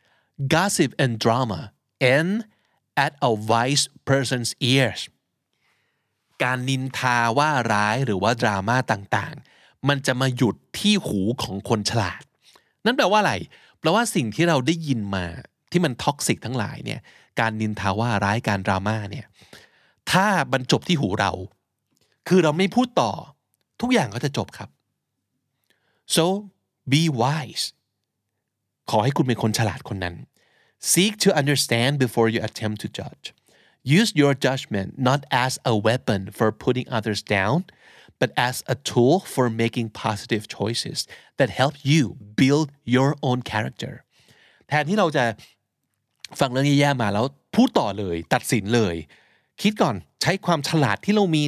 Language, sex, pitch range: Thai, male, 110-150 Hz